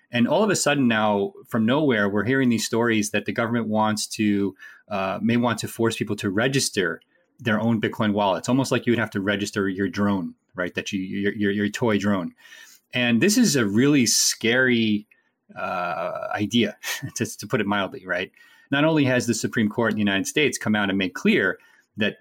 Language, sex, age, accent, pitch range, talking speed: English, male, 30-49, American, 100-120 Hz, 205 wpm